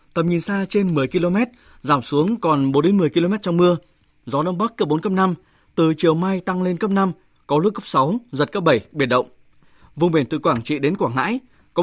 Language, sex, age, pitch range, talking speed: Vietnamese, male, 20-39, 140-175 Hz, 240 wpm